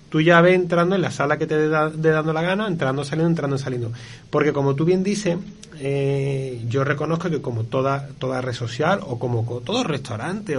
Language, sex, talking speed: Spanish, male, 210 wpm